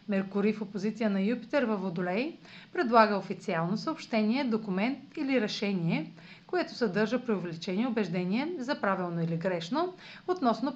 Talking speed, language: 130 wpm, Bulgarian